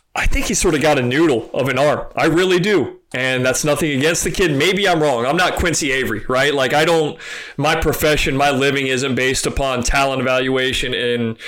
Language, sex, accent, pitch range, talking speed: English, male, American, 130-165 Hz, 215 wpm